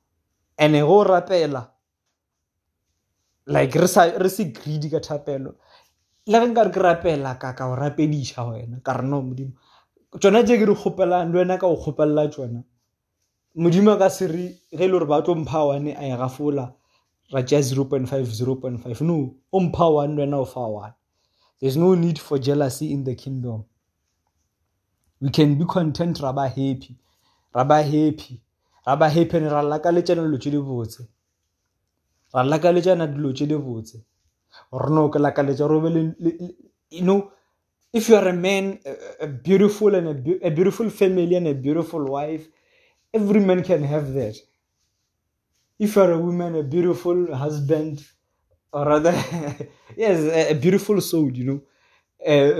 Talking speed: 115 wpm